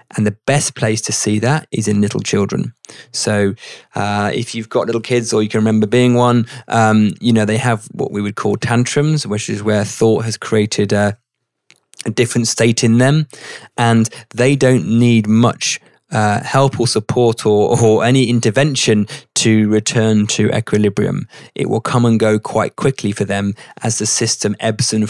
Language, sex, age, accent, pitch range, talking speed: English, male, 20-39, British, 105-120 Hz, 185 wpm